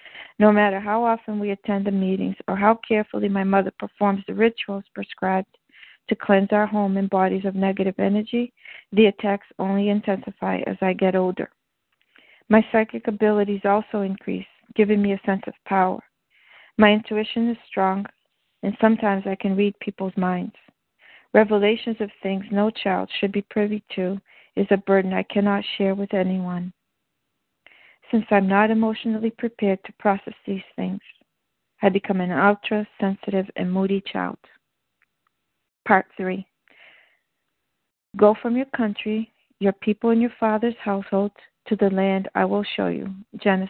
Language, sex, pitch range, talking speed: English, female, 195-220 Hz, 150 wpm